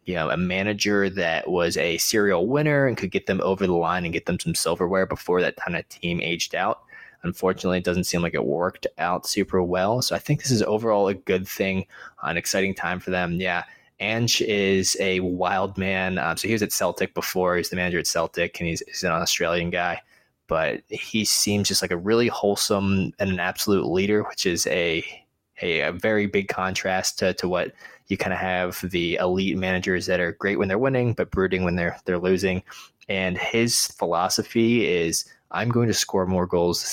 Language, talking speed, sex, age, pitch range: English, 210 wpm, male, 20-39, 90-100 Hz